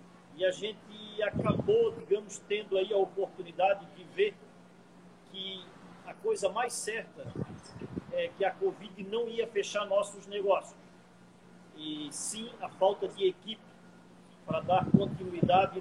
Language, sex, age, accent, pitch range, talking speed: Portuguese, male, 40-59, Brazilian, 175-205 Hz, 130 wpm